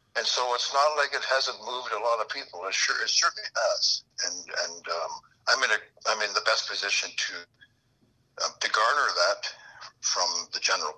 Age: 60-79